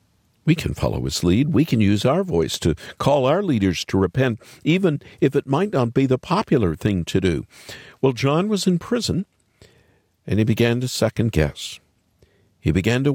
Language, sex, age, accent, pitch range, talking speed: English, male, 50-69, American, 95-135 Hz, 185 wpm